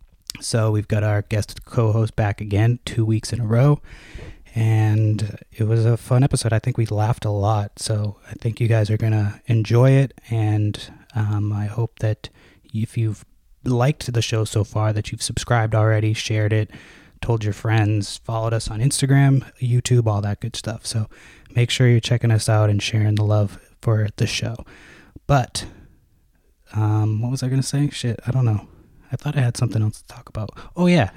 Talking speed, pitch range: 195 wpm, 105-125 Hz